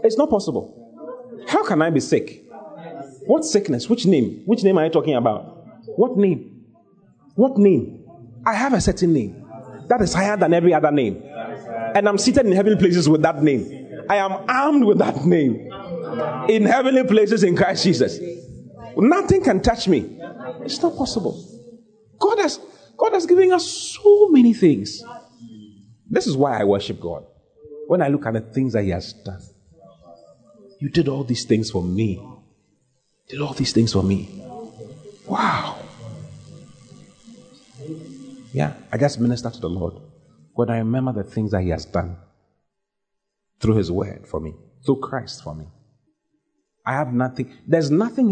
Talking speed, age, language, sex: 160 wpm, 30-49, English, male